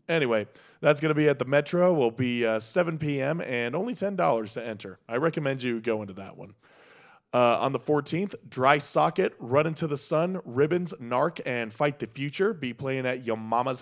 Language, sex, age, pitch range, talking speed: English, male, 20-39, 120-150 Hz, 200 wpm